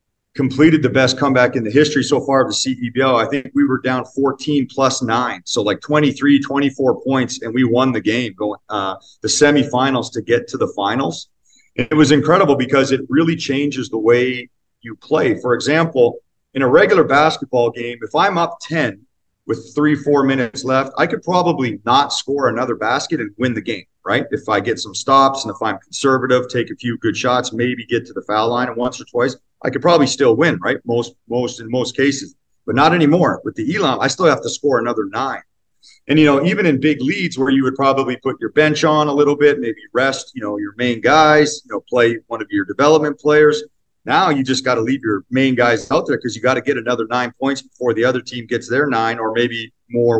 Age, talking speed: 40-59, 225 wpm